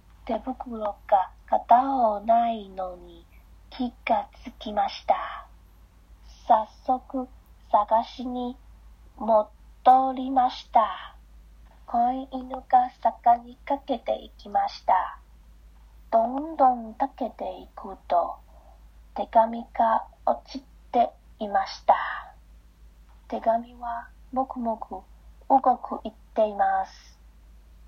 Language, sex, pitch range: Japanese, female, 180-255 Hz